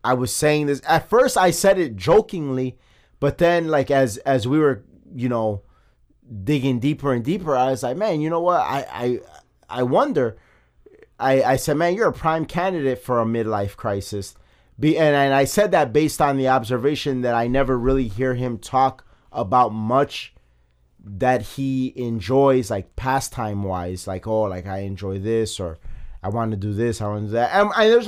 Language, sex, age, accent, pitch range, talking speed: English, male, 30-49, American, 105-140 Hz, 190 wpm